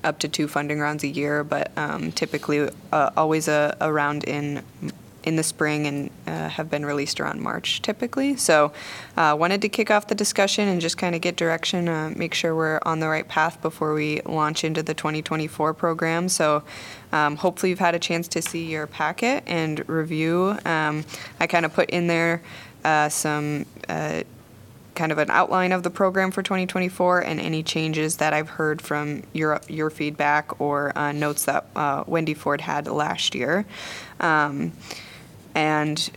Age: 20-39